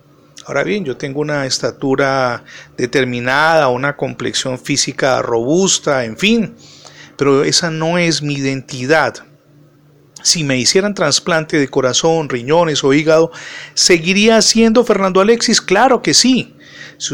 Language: Spanish